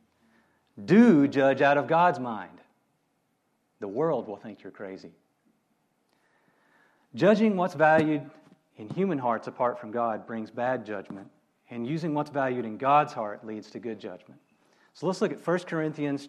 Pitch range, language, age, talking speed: 120-160 Hz, English, 40-59, 150 wpm